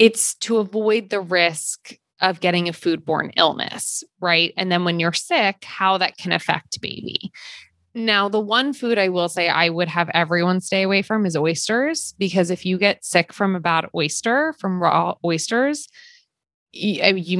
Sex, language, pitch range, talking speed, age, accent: female, English, 170-215 Hz, 170 wpm, 20-39, American